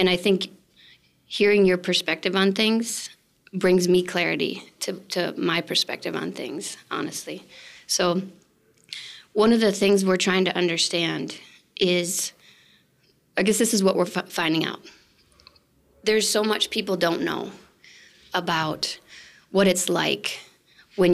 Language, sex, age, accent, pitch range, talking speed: English, female, 20-39, American, 180-205 Hz, 135 wpm